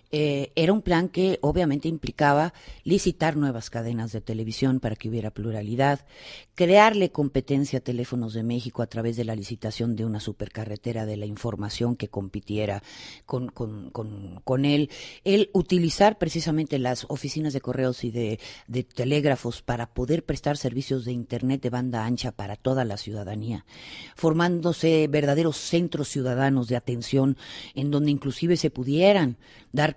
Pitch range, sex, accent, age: 120-165 Hz, female, Mexican, 50-69